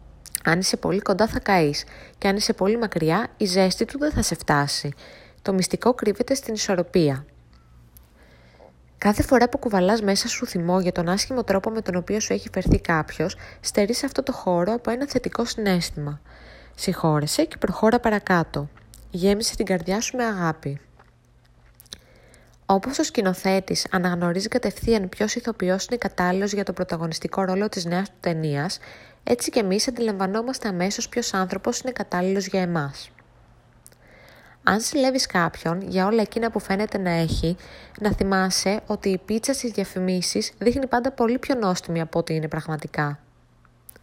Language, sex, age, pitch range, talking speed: Greek, female, 20-39, 170-225 Hz, 155 wpm